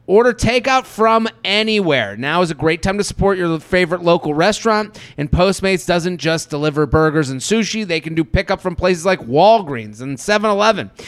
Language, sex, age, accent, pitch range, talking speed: English, male, 30-49, American, 150-210 Hz, 180 wpm